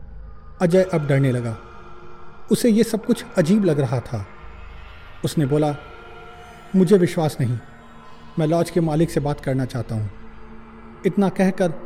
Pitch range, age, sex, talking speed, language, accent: 115-185 Hz, 40-59, male, 140 wpm, Hindi, native